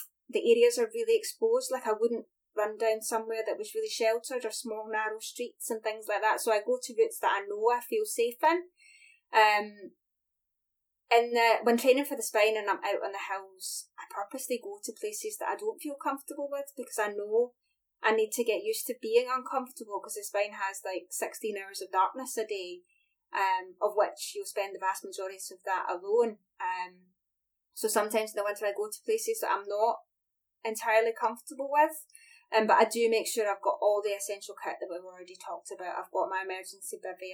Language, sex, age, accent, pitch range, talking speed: English, female, 20-39, British, 205-315 Hz, 210 wpm